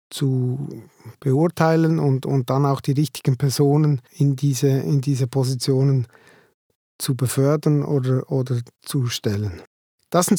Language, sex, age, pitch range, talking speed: German, male, 50-69, 135-170 Hz, 120 wpm